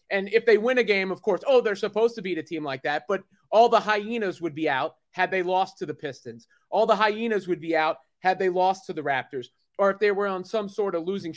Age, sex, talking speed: 30-49, male, 270 wpm